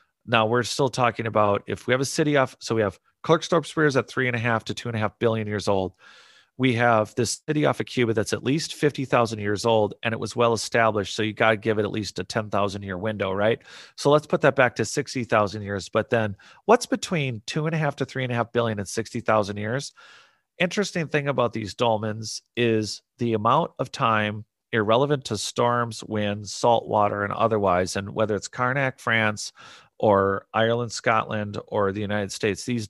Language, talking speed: English, 220 wpm